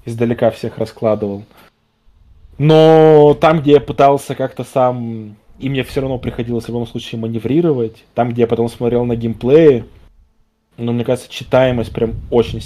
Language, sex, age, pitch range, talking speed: Russian, male, 20-39, 105-130 Hz, 150 wpm